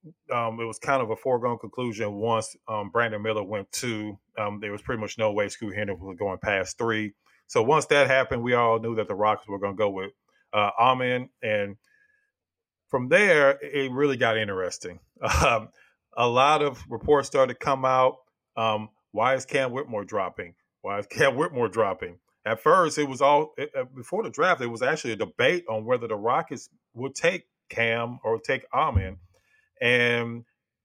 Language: English